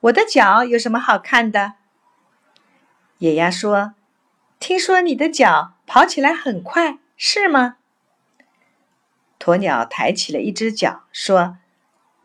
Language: Chinese